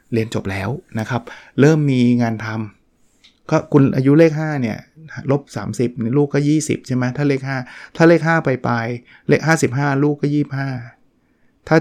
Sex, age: male, 20-39